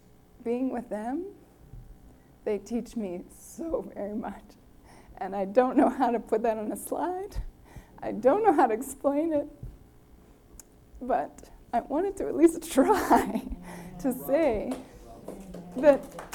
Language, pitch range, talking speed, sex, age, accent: English, 205-285 Hz, 135 wpm, female, 20-39, American